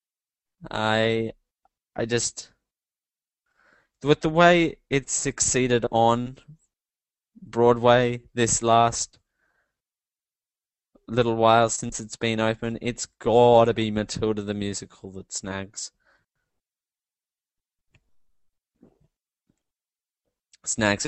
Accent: Australian